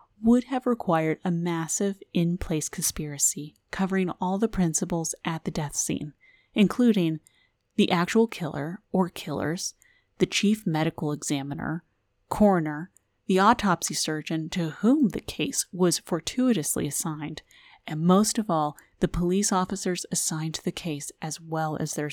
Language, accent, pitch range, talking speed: English, American, 150-195 Hz, 140 wpm